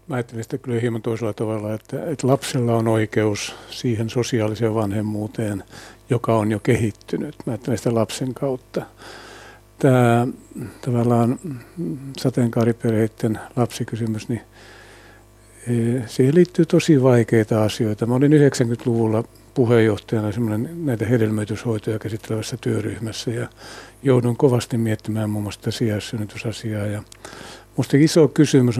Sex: male